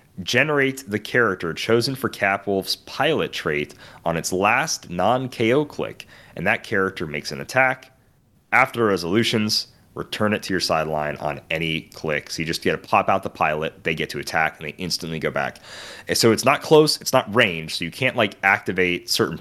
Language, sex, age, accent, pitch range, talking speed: English, male, 30-49, American, 80-115 Hz, 195 wpm